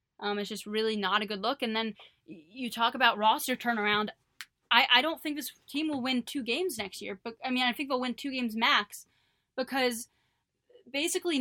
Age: 10-29